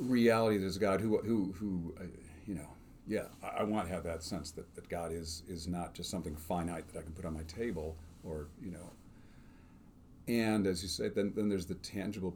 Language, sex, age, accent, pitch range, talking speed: English, male, 40-59, American, 85-100 Hz, 210 wpm